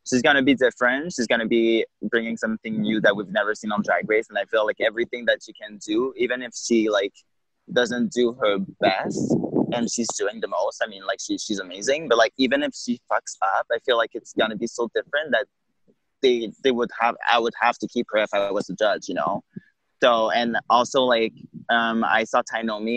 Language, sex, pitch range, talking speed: English, male, 105-125 Hz, 225 wpm